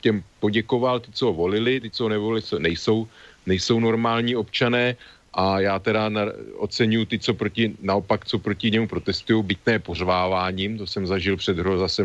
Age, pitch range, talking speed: 40-59, 95-105 Hz, 160 wpm